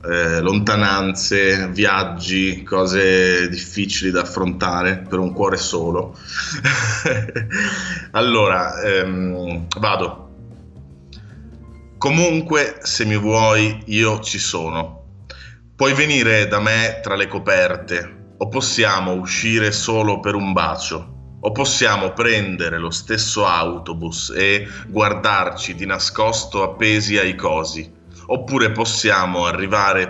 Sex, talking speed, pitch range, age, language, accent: male, 100 wpm, 90-110 Hz, 30-49, Italian, native